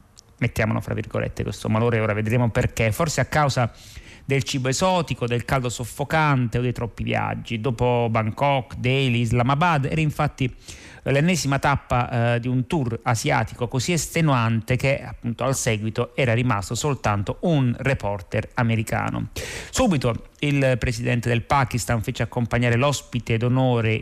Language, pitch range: Italian, 115-135 Hz